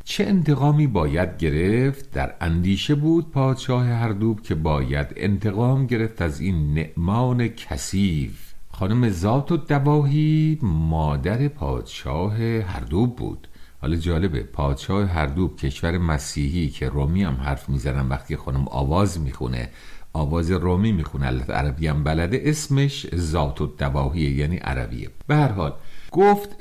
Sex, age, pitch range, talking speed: male, 50-69, 75-115 Hz, 115 wpm